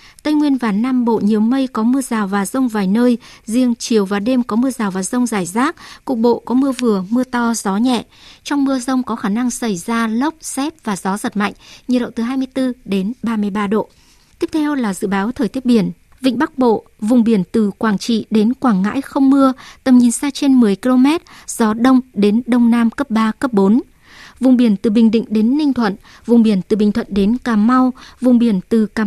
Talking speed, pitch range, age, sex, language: 230 wpm, 215-260 Hz, 60-79, male, Vietnamese